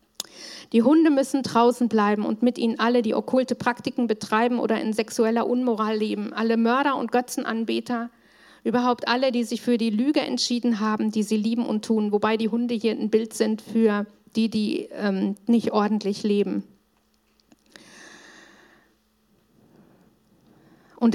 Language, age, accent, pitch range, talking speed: German, 50-69, German, 225-270 Hz, 145 wpm